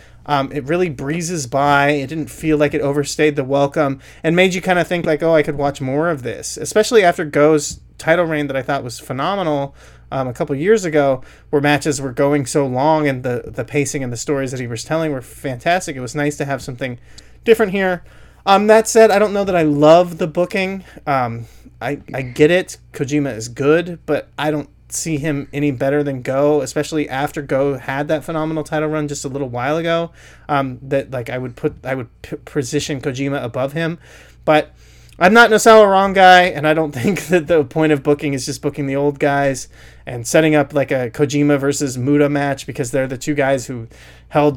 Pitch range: 135-155 Hz